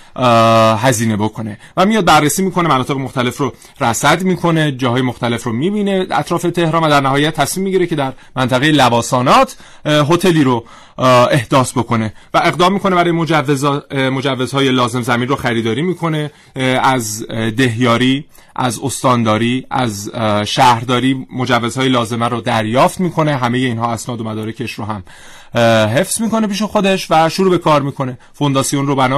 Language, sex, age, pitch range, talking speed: Persian, male, 30-49, 120-155 Hz, 150 wpm